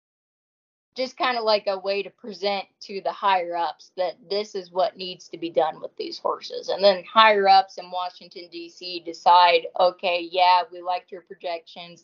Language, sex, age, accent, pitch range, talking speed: English, female, 20-39, American, 175-210 Hz, 185 wpm